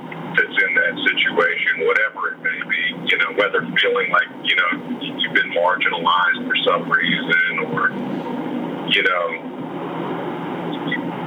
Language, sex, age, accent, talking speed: English, male, 40-59, American, 130 wpm